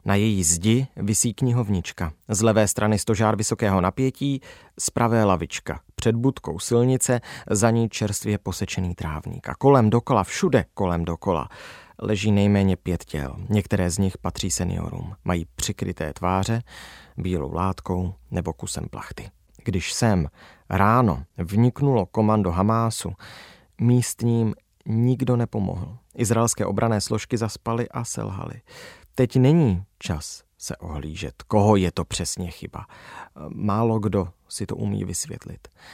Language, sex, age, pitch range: Czech, male, 30-49, 95-120 Hz